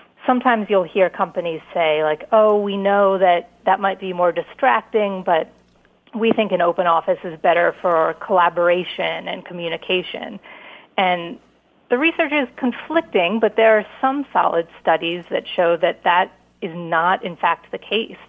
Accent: American